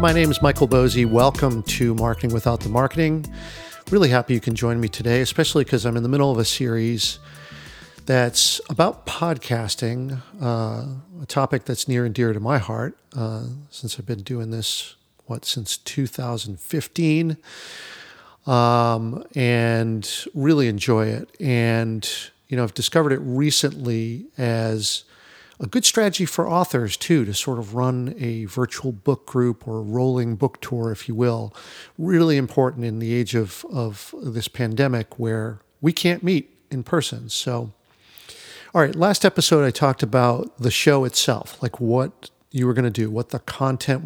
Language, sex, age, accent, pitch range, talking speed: English, male, 50-69, American, 115-140 Hz, 160 wpm